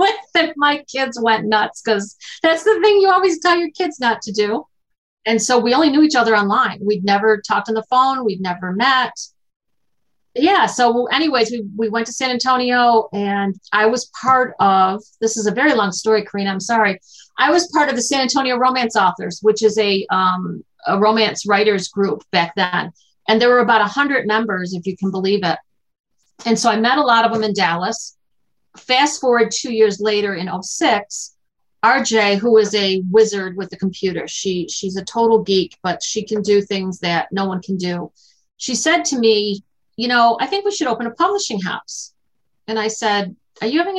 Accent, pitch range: American, 205-265 Hz